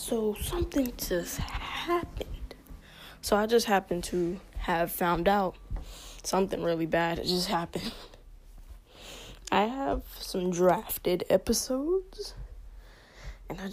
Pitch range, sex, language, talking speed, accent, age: 165-200 Hz, female, English, 110 wpm, American, 10-29